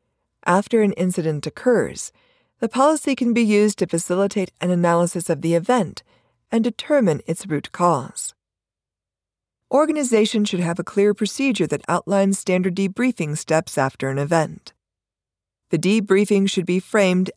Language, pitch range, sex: English, 160-215 Hz, female